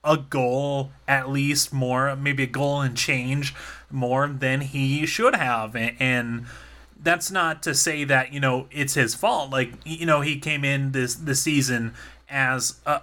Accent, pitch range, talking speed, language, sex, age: American, 125-145 Hz, 175 wpm, English, male, 20-39